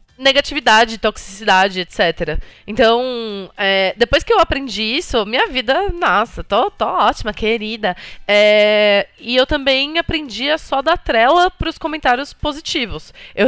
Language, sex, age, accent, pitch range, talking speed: Portuguese, female, 20-39, Brazilian, 210-290 Hz, 140 wpm